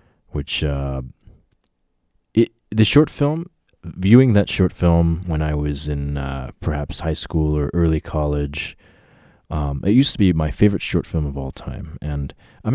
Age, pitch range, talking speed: 20-39, 70-90 Hz, 165 wpm